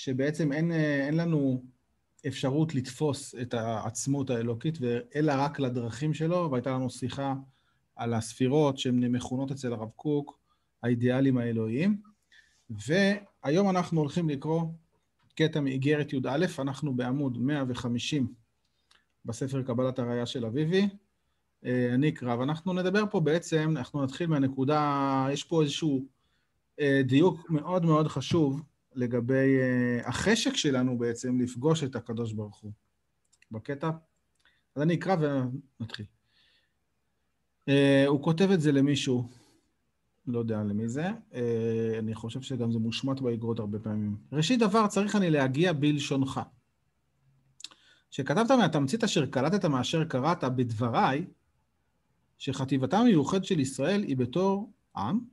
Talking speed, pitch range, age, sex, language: 115 wpm, 125-155 Hz, 30-49, male, Hebrew